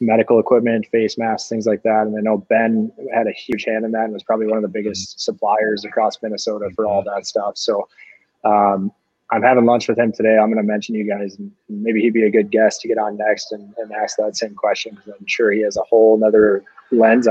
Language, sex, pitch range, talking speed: English, male, 105-115 Hz, 245 wpm